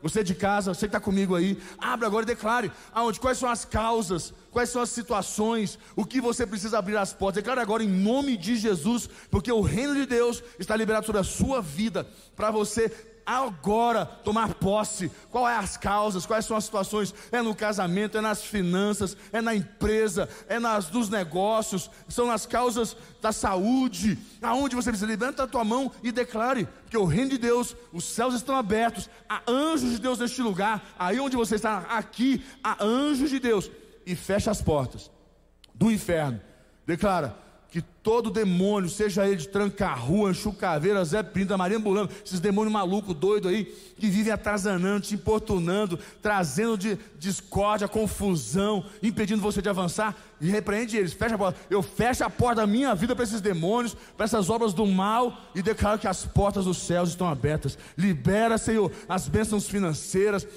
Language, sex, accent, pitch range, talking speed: Portuguese, male, Brazilian, 195-230 Hz, 180 wpm